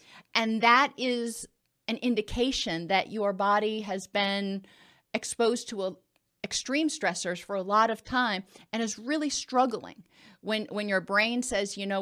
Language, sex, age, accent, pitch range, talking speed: English, female, 40-59, American, 190-245 Hz, 150 wpm